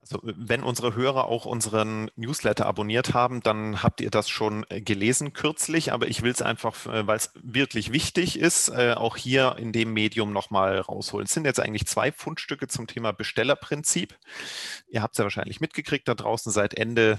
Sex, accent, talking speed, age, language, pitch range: male, German, 185 wpm, 30-49, German, 105-130 Hz